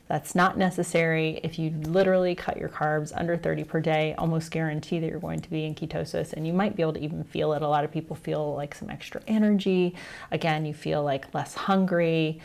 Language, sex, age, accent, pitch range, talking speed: English, female, 30-49, American, 155-180 Hz, 220 wpm